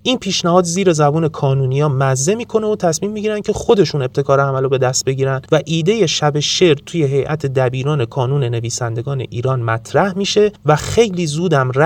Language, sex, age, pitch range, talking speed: Persian, male, 30-49, 130-180 Hz, 165 wpm